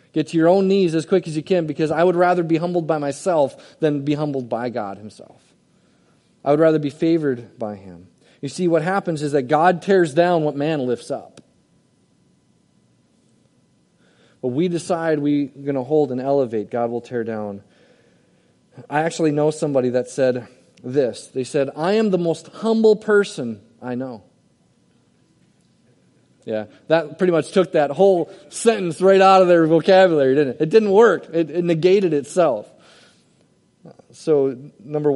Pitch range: 120-165 Hz